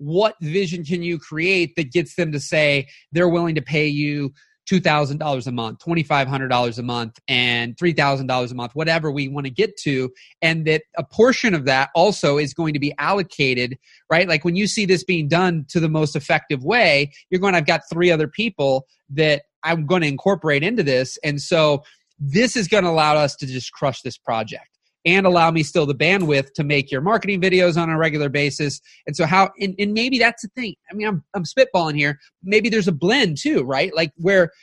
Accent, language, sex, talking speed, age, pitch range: American, English, male, 210 wpm, 30-49, 145-200 Hz